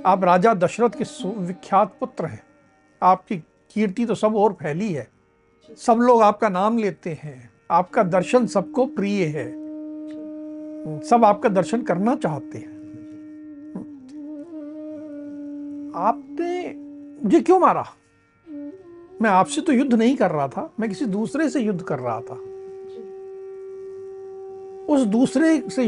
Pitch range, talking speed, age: 205-305 Hz, 125 wpm, 60-79